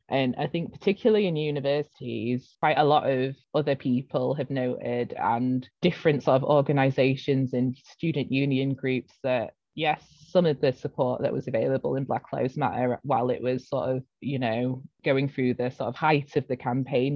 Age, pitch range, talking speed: 20-39, 130-160 Hz, 180 wpm